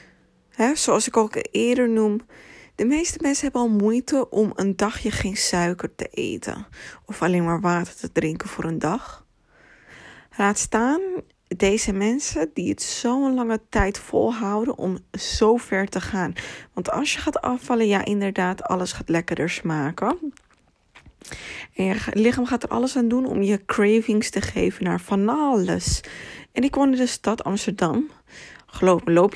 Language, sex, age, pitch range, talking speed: Dutch, female, 20-39, 185-250 Hz, 160 wpm